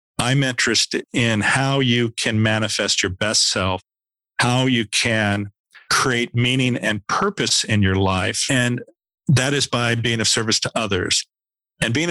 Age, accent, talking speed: 50-69, American, 155 wpm